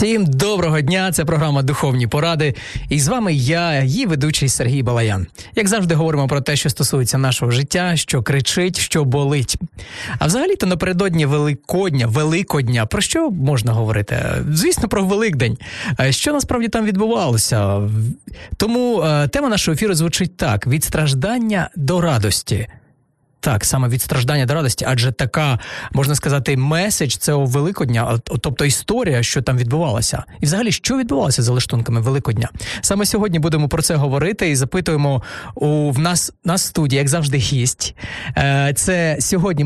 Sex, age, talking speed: male, 20-39, 150 wpm